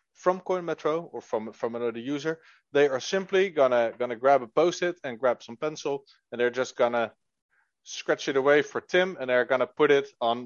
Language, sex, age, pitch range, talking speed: English, male, 20-39, 120-165 Hz, 205 wpm